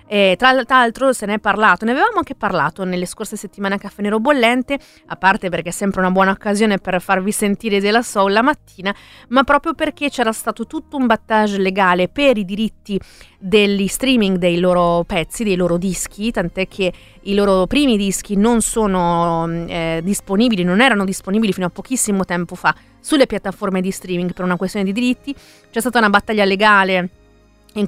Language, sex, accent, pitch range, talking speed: Italian, female, native, 175-220 Hz, 185 wpm